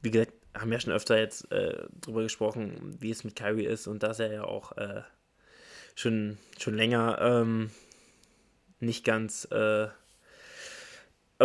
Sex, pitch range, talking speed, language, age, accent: male, 110-125 Hz, 145 wpm, German, 20-39, German